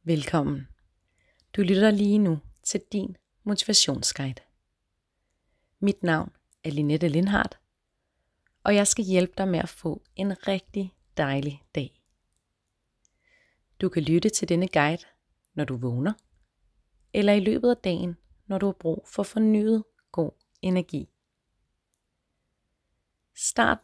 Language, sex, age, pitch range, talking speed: Danish, female, 30-49, 135-200 Hz, 120 wpm